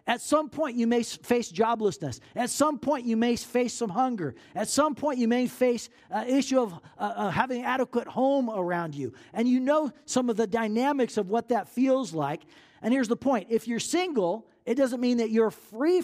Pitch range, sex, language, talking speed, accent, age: 200-250 Hz, male, English, 205 wpm, American, 40-59